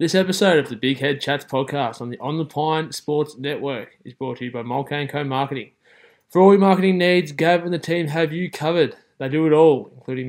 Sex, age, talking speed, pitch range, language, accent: male, 20-39, 240 wpm, 135-165 Hz, English, Australian